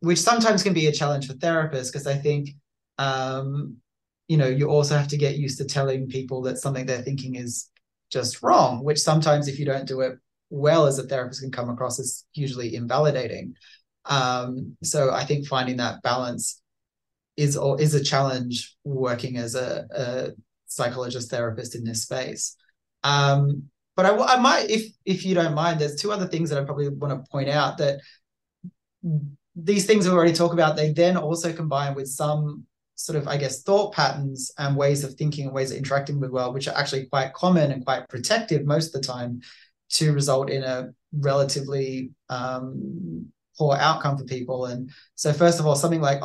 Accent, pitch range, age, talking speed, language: Australian, 130-150 Hz, 20-39, 190 wpm, English